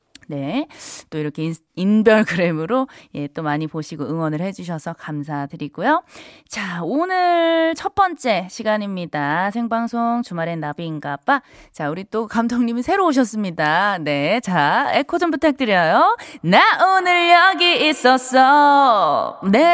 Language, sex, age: Korean, female, 20-39